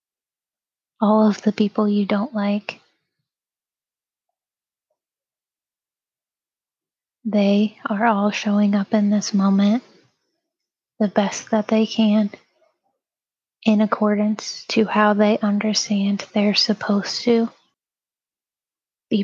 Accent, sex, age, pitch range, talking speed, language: American, female, 20-39, 205-220 Hz, 95 wpm, English